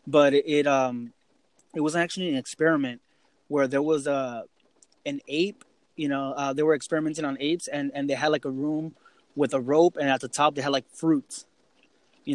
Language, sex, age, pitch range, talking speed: English, male, 20-39, 145-170 Hz, 200 wpm